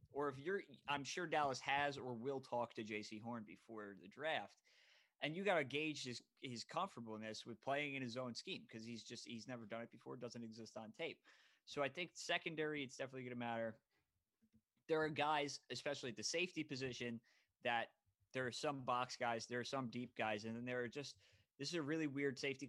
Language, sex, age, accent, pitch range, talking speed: English, male, 20-39, American, 115-140 Hz, 225 wpm